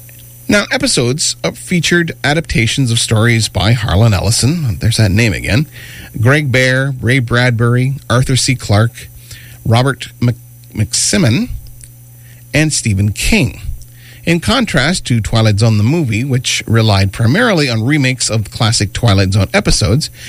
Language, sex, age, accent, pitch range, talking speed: English, male, 40-59, American, 115-135 Hz, 125 wpm